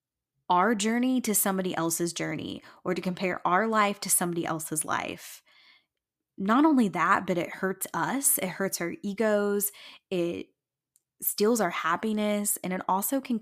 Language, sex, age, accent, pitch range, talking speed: English, female, 10-29, American, 175-210 Hz, 150 wpm